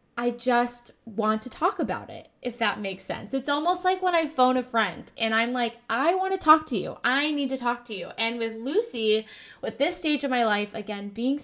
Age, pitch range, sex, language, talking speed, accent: 10-29, 225-285 Hz, female, English, 235 wpm, American